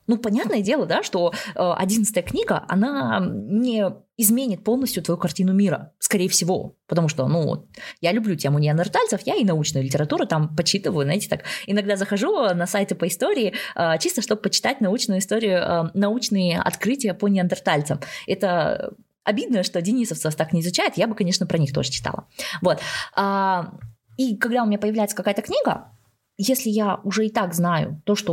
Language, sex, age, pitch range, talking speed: Russian, female, 20-39, 175-220 Hz, 160 wpm